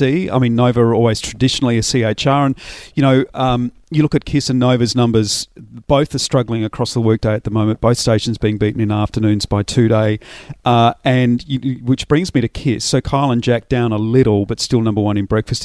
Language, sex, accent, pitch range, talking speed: English, male, Australian, 110-135 Hz, 220 wpm